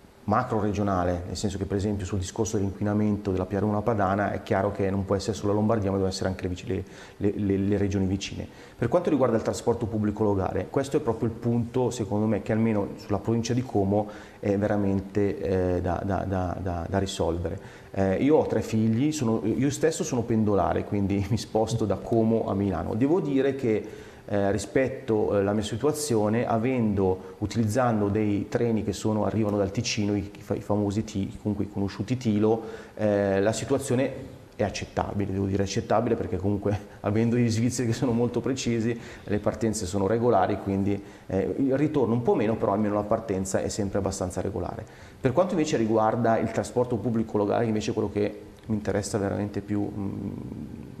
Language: Italian